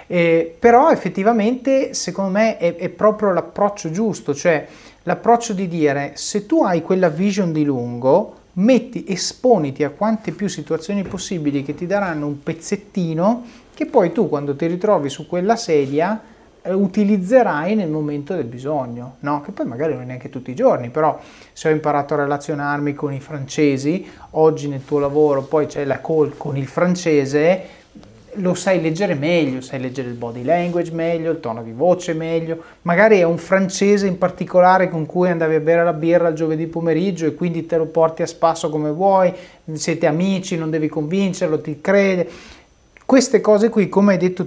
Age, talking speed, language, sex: 30-49, 175 wpm, Italian, male